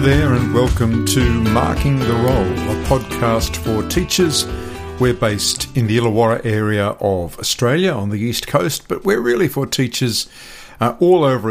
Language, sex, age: English, male, 50-69